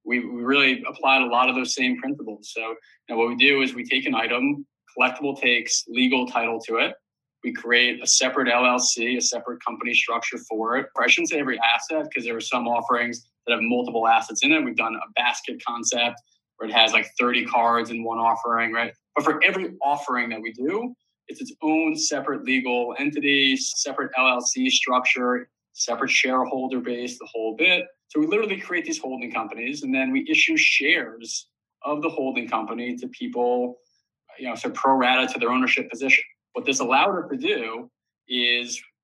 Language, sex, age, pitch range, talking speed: English, male, 20-39, 120-140 Hz, 190 wpm